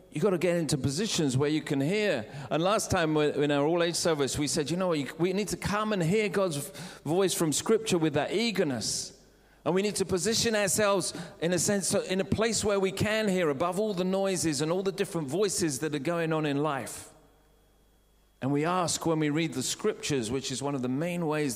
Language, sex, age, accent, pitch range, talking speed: English, male, 40-59, British, 125-185 Hz, 225 wpm